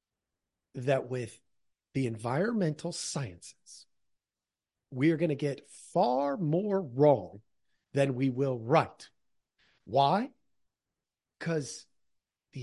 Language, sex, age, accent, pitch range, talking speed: English, male, 40-59, American, 120-160 Hz, 90 wpm